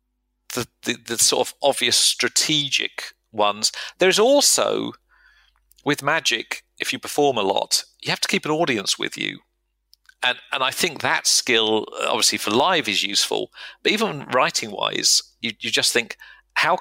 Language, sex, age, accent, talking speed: English, male, 50-69, British, 160 wpm